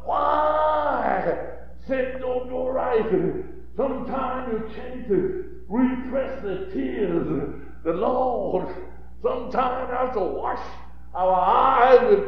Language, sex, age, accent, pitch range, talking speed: English, male, 60-79, American, 225-370 Hz, 100 wpm